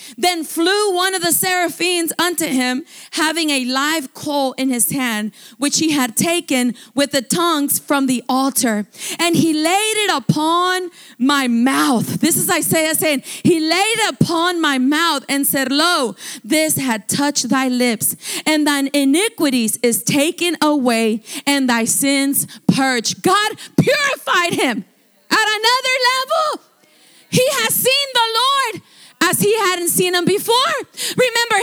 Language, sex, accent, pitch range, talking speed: English, female, American, 250-345 Hz, 145 wpm